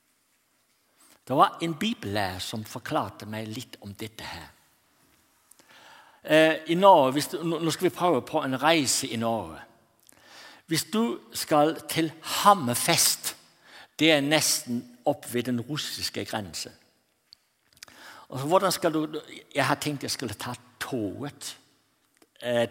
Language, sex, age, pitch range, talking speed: Danish, male, 60-79, 125-180 Hz, 120 wpm